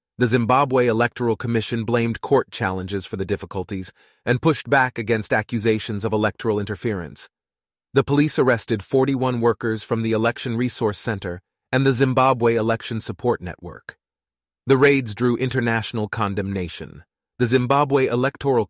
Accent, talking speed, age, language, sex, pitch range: American, 135 wpm, 30-49, English, male, 100-120 Hz